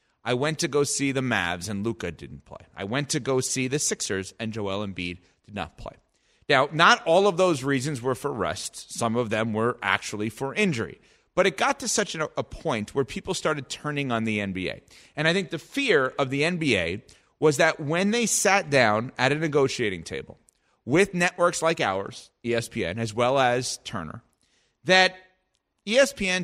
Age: 30-49